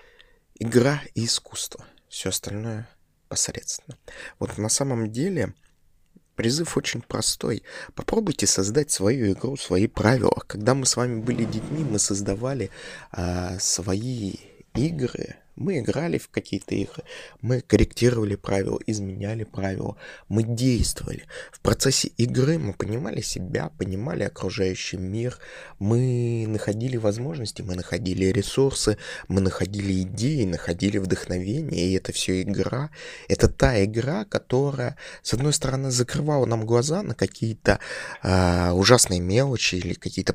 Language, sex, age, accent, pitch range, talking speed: Russian, male, 20-39, native, 95-130 Hz, 120 wpm